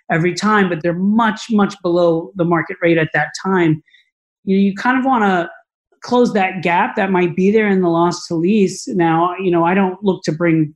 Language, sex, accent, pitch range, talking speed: English, male, American, 170-200 Hz, 220 wpm